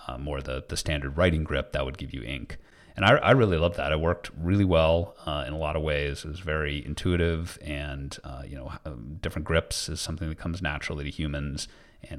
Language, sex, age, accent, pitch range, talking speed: English, male, 30-49, American, 70-85 Hz, 230 wpm